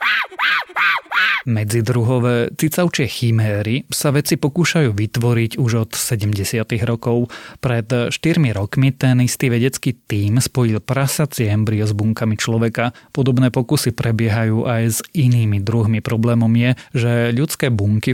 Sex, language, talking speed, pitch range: male, Slovak, 120 wpm, 110-130 Hz